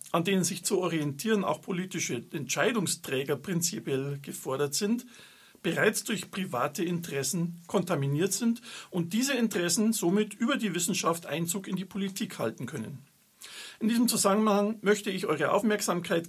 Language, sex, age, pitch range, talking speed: German, male, 50-69, 165-215 Hz, 135 wpm